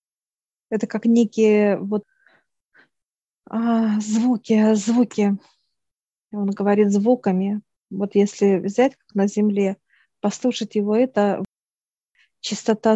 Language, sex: Russian, female